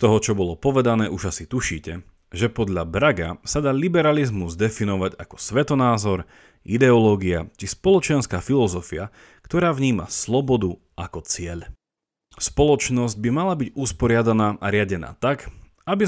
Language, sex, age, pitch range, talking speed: Slovak, male, 30-49, 85-130 Hz, 125 wpm